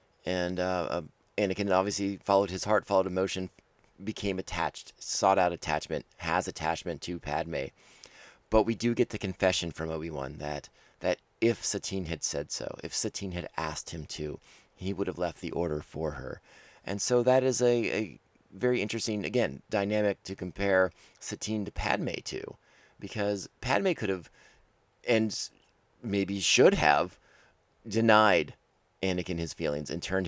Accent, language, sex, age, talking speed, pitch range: American, English, male, 30-49, 155 wpm, 85-110 Hz